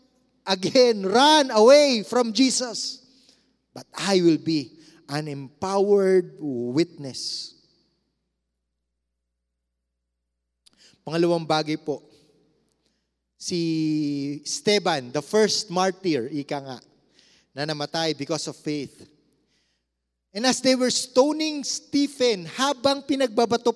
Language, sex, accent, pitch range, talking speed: English, male, Filipino, 150-245 Hz, 90 wpm